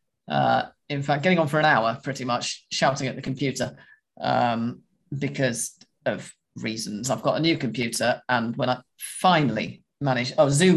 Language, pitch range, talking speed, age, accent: English, 130-165 Hz, 165 wpm, 40-59, British